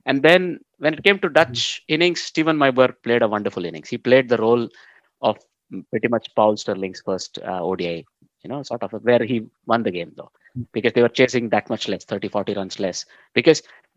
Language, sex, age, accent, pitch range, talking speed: English, male, 20-39, Indian, 115-140 Hz, 205 wpm